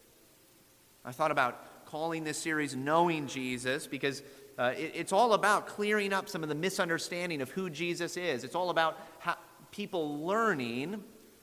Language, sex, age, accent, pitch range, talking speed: English, male, 30-49, American, 145-200 Hz, 145 wpm